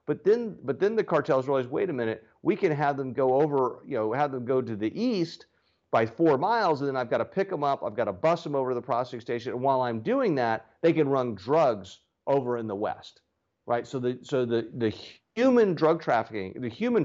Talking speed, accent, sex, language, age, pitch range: 245 wpm, American, male, English, 40-59, 115-160 Hz